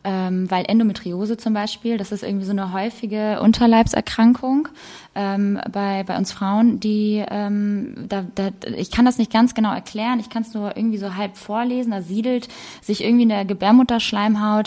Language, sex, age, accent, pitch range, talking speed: German, female, 20-39, German, 195-230 Hz, 175 wpm